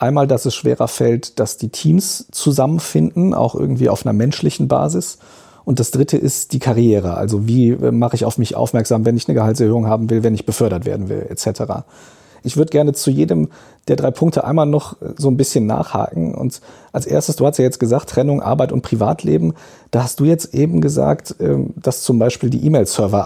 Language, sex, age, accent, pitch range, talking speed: German, male, 40-59, German, 105-135 Hz, 200 wpm